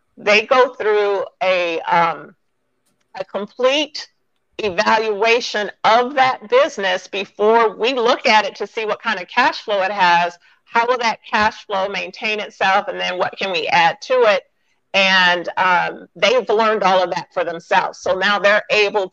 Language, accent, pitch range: English, American, 190-235 Hz